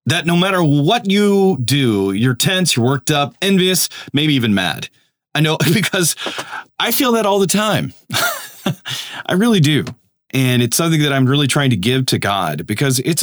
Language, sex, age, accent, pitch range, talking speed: English, male, 30-49, American, 125-170 Hz, 180 wpm